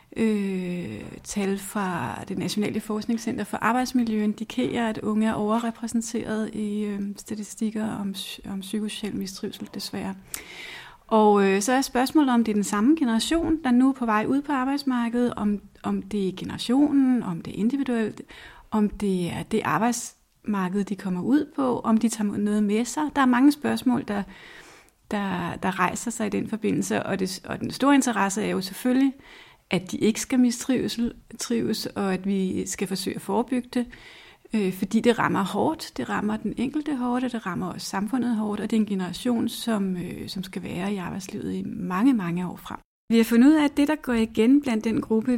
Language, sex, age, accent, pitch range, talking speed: Danish, female, 30-49, native, 205-245 Hz, 185 wpm